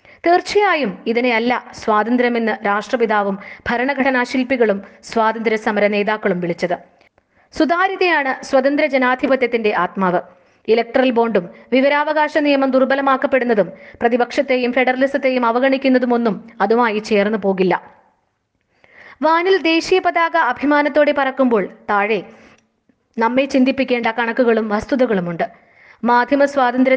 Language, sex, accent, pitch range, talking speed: Malayalam, female, native, 215-270 Hz, 80 wpm